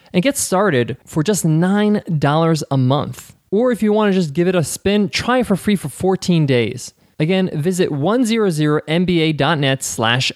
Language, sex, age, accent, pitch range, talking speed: English, male, 20-39, American, 130-180 Hz, 170 wpm